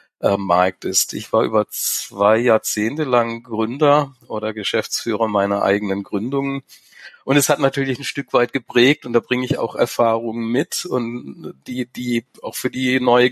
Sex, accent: male, German